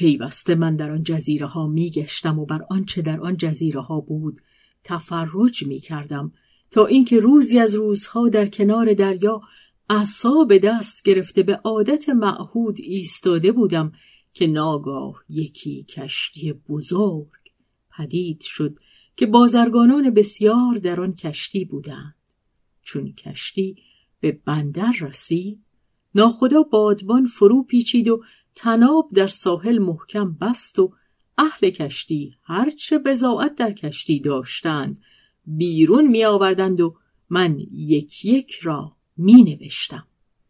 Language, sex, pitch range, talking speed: Persian, female, 160-235 Hz, 115 wpm